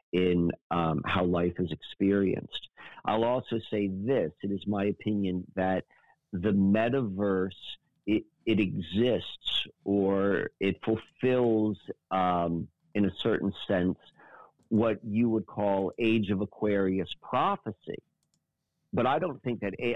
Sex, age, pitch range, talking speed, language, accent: male, 50-69, 95-115 Hz, 125 wpm, English, American